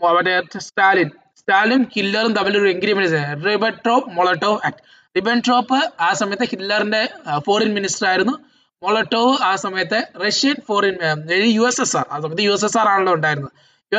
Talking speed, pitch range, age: 140 wpm, 195-245 Hz, 20-39